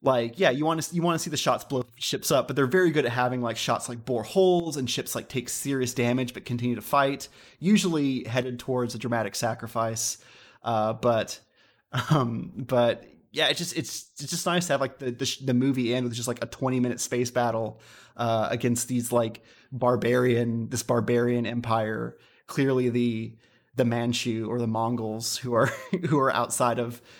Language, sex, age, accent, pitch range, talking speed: English, male, 30-49, American, 115-135 Hz, 200 wpm